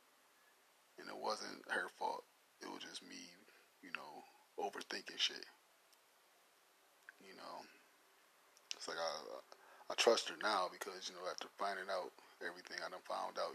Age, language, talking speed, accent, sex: 30-49, English, 140 wpm, American, male